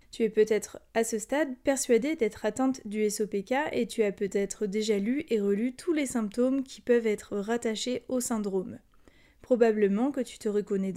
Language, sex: French, female